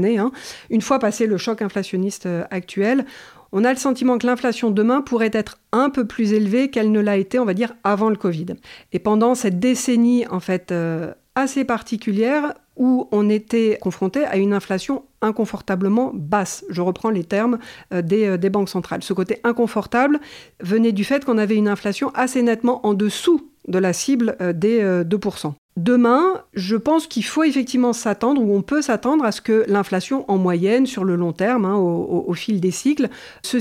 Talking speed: 180 wpm